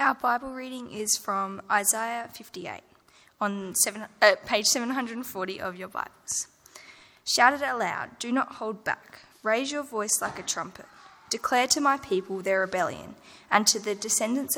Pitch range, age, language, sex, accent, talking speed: 200-255 Hz, 10-29, English, female, Australian, 150 wpm